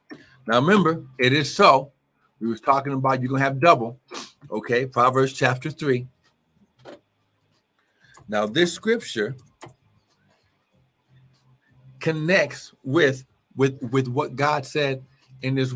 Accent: American